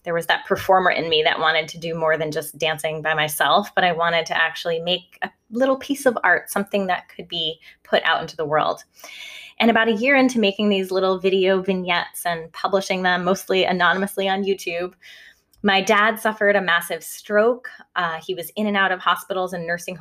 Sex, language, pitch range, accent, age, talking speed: female, English, 170-205 Hz, American, 20-39, 205 wpm